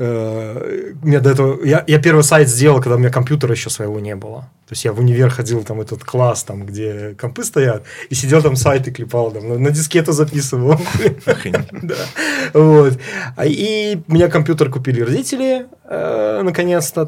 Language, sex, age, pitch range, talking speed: Russian, male, 30-49, 120-155 Hz, 165 wpm